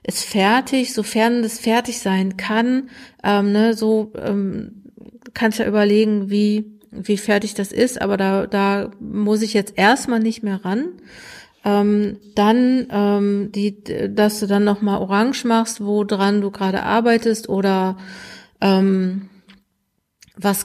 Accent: German